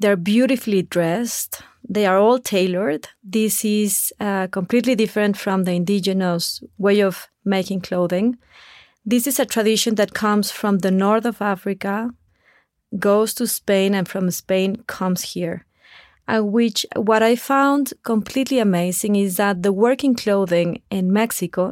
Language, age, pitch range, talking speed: English, 30-49, 195-230 Hz, 145 wpm